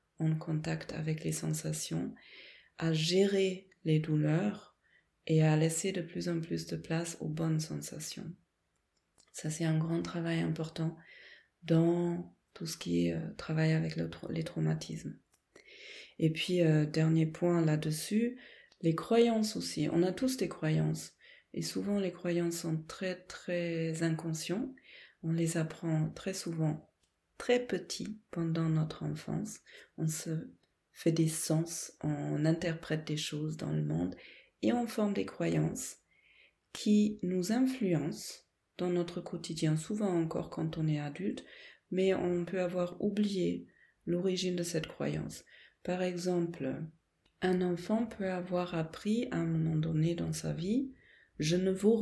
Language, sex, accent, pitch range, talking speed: French, female, French, 155-185 Hz, 145 wpm